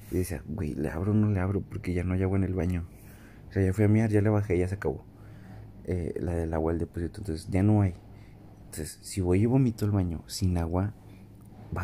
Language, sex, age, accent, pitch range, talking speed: Spanish, male, 30-49, Mexican, 95-110 Hz, 250 wpm